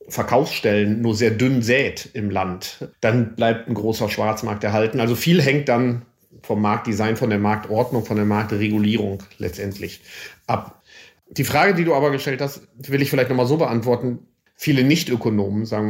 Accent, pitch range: German, 110-135 Hz